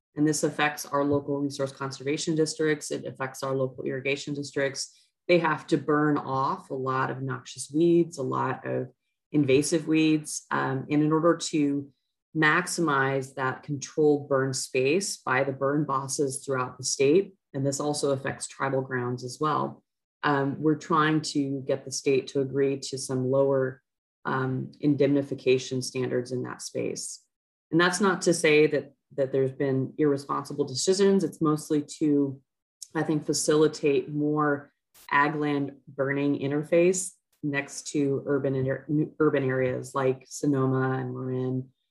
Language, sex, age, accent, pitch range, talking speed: English, female, 30-49, American, 130-150 Hz, 145 wpm